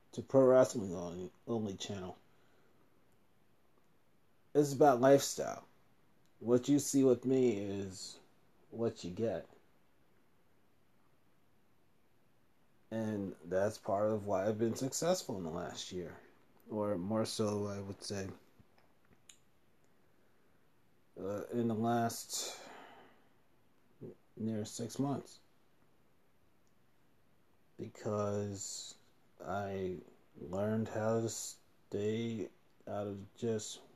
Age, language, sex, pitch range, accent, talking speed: 30-49, English, male, 105-130 Hz, American, 90 wpm